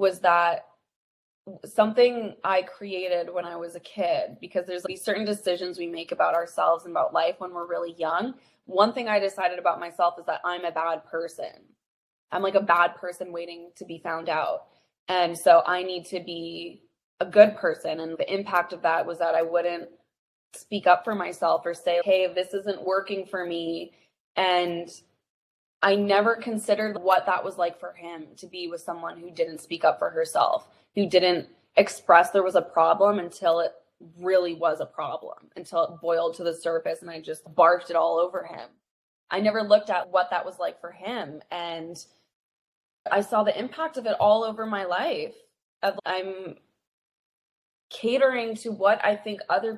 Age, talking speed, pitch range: 20-39, 185 wpm, 170-200 Hz